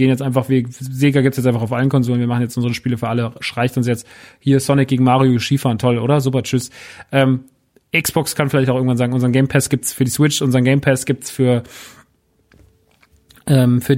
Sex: male